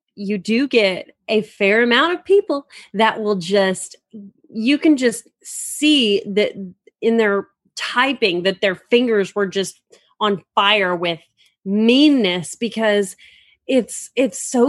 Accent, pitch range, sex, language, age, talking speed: American, 195-240 Hz, female, English, 30-49, 130 wpm